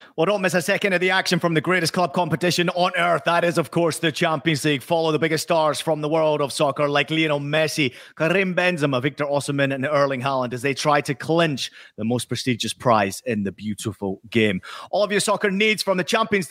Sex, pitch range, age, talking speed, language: male, 140-185 Hz, 30-49, 225 wpm, English